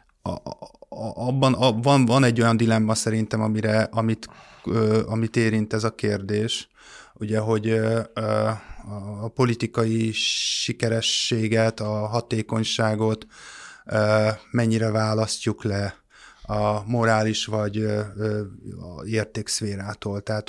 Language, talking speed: Hungarian, 80 wpm